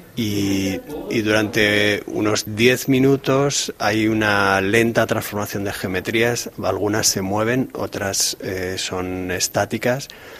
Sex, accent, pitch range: male, Spanish, 95-110 Hz